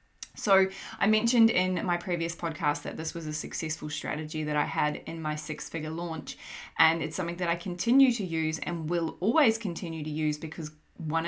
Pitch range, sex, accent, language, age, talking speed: 155-185 Hz, female, Australian, English, 20-39, 190 wpm